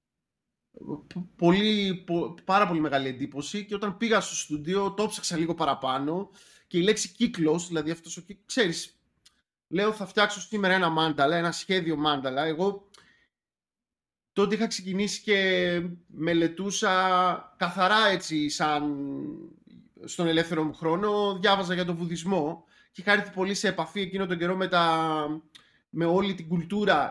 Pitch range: 155-200 Hz